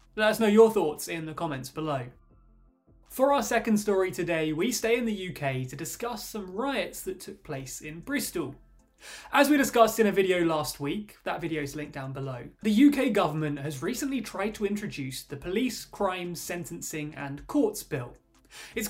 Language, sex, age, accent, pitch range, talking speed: English, male, 20-39, British, 155-230 Hz, 185 wpm